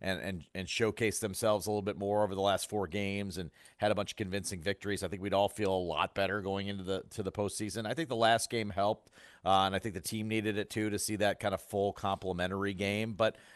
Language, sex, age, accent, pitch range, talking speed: English, male, 40-59, American, 100-115 Hz, 260 wpm